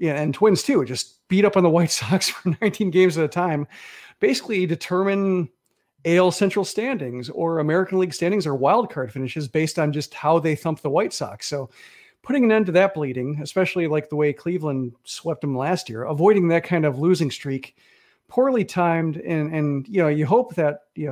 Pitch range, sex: 150-185 Hz, male